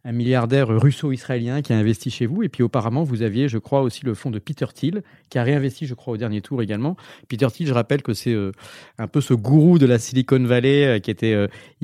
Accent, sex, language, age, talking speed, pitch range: French, male, French, 30-49, 250 wpm, 110-140 Hz